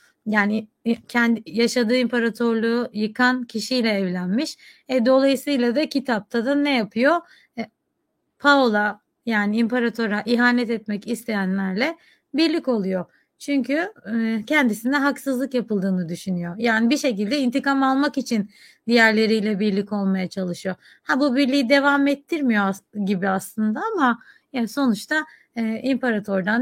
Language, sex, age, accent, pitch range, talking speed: Turkish, female, 30-49, native, 205-265 Hz, 110 wpm